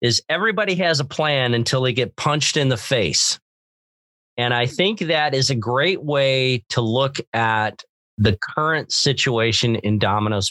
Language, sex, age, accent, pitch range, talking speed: English, male, 40-59, American, 105-135 Hz, 160 wpm